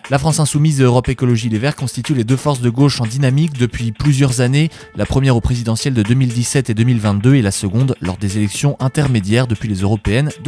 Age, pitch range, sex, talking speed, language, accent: 20-39, 115-145 Hz, male, 220 wpm, French, French